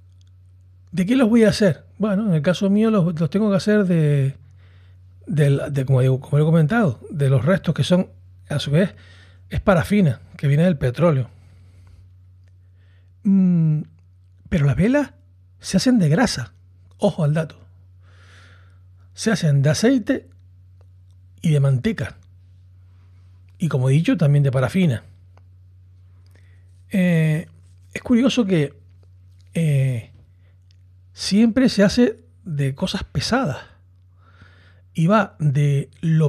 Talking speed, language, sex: 130 wpm, Spanish, male